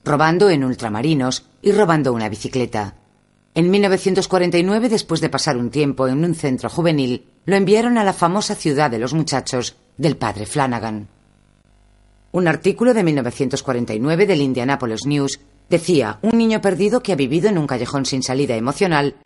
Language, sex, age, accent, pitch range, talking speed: Spanish, female, 40-59, Spanish, 120-180 Hz, 155 wpm